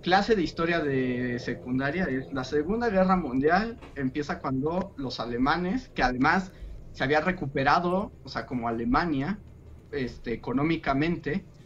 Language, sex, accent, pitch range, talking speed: Spanish, male, Mexican, 125-180 Hz, 125 wpm